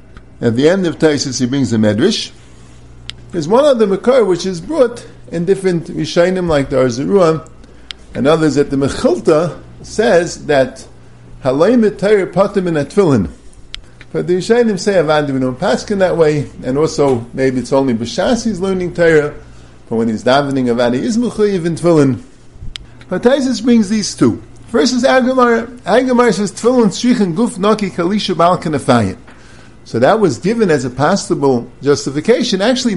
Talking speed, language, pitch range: 150 wpm, English, 140-225 Hz